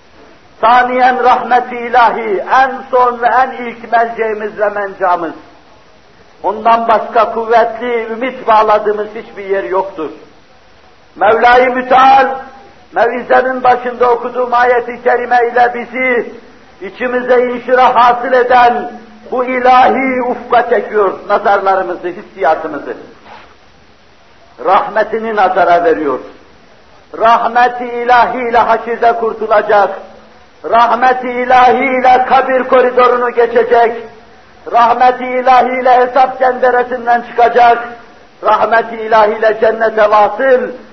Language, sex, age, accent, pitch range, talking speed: Turkish, male, 50-69, native, 220-250 Hz, 90 wpm